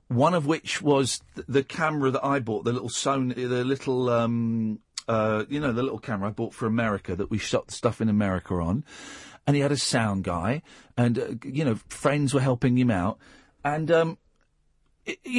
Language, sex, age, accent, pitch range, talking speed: English, male, 40-59, British, 125-190 Hz, 205 wpm